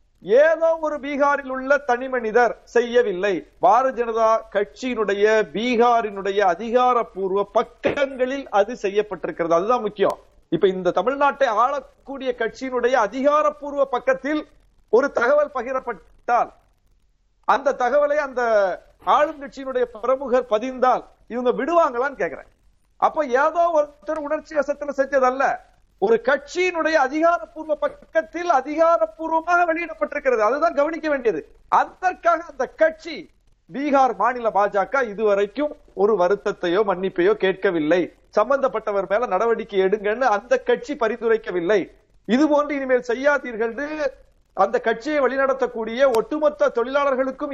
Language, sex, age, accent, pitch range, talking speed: Tamil, male, 50-69, native, 230-295 Hz, 90 wpm